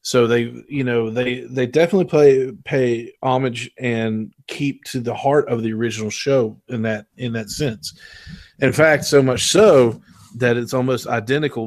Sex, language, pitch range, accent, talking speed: male, English, 115-145 Hz, American, 160 wpm